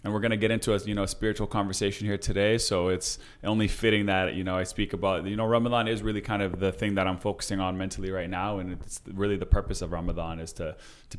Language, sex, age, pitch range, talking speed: English, male, 20-39, 90-100 Hz, 270 wpm